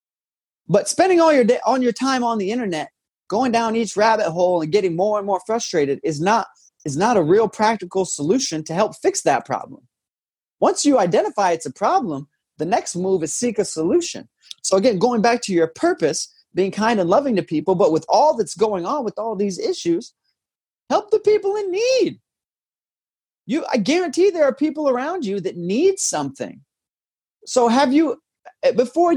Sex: male